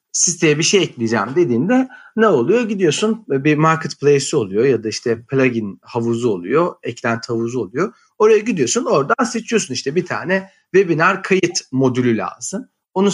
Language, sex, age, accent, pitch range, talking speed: Turkish, male, 40-59, native, 125-190 Hz, 145 wpm